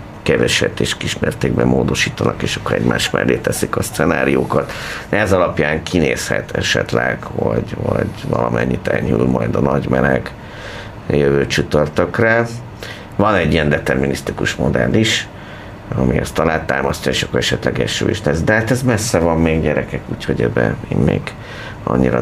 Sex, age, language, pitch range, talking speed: male, 50-69, Hungarian, 70-95 Hz, 140 wpm